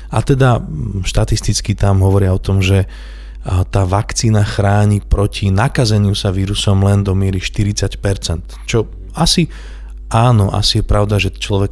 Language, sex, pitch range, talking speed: Slovak, male, 95-105 Hz, 140 wpm